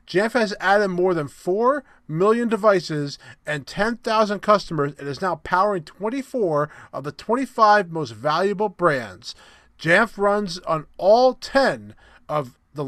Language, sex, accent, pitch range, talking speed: English, male, American, 150-200 Hz, 135 wpm